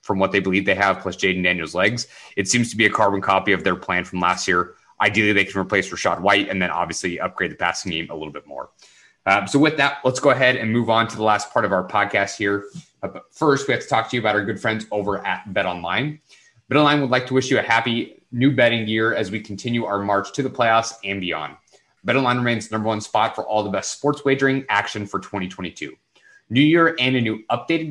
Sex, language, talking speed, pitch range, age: male, English, 255 wpm, 100-125 Hz, 30-49